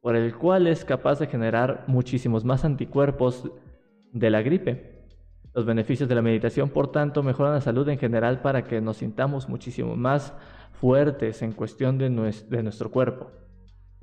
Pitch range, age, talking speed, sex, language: 115-140 Hz, 20-39, 160 wpm, male, Spanish